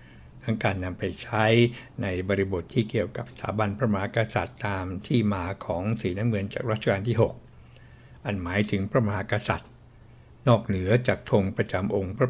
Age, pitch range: 60-79, 100-125 Hz